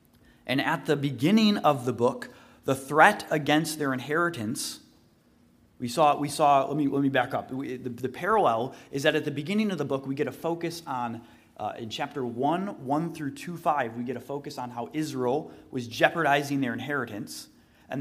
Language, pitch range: English, 130-170 Hz